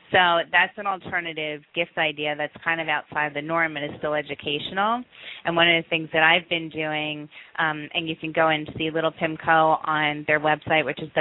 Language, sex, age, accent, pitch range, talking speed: English, female, 30-49, American, 150-170 Hz, 215 wpm